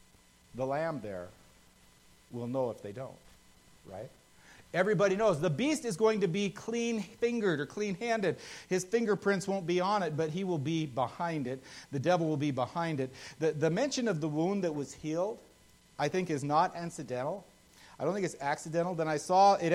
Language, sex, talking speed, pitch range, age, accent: English, male, 180 wpm, 145-195 Hz, 50-69, American